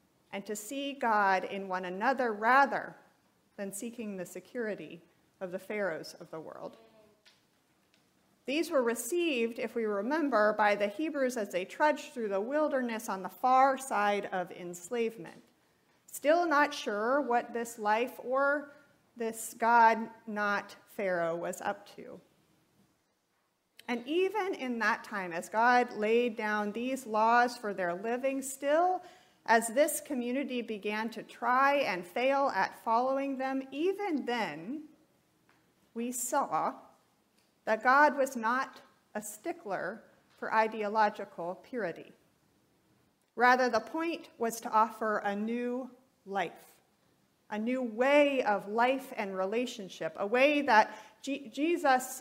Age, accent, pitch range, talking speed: 40-59, American, 210-270 Hz, 125 wpm